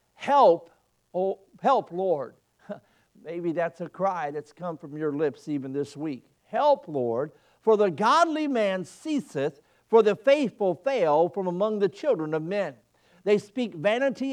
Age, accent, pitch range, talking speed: 50-69, American, 155-225 Hz, 150 wpm